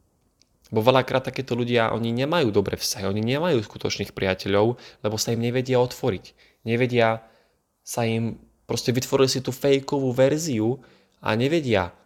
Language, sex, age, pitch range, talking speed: Slovak, male, 20-39, 105-125 Hz, 140 wpm